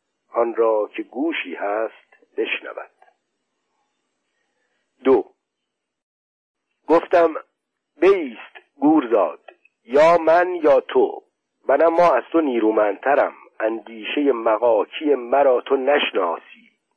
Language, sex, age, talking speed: Persian, male, 50-69, 85 wpm